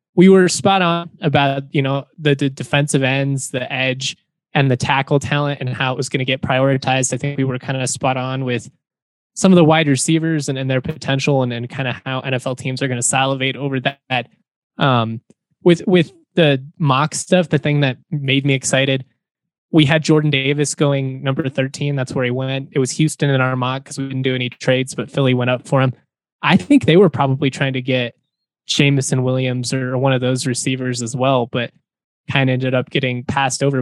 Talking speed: 220 wpm